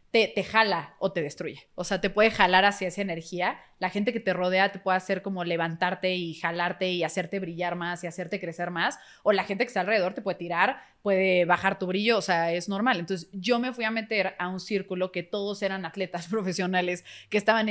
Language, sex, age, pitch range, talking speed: Spanish, female, 20-39, 180-215 Hz, 225 wpm